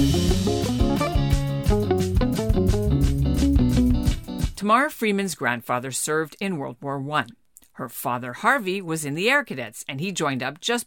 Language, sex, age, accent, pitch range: English, female, 50-69, American, 135-195 Hz